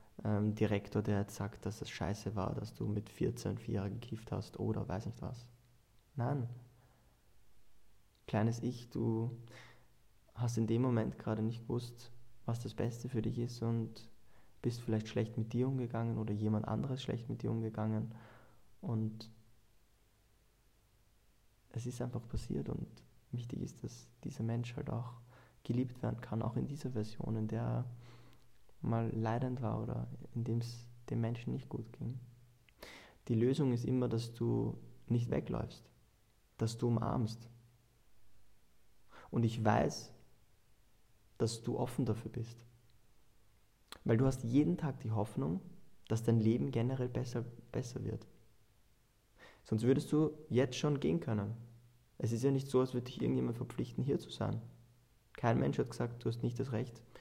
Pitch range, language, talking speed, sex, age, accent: 110-120 Hz, German, 155 wpm, male, 20-39, German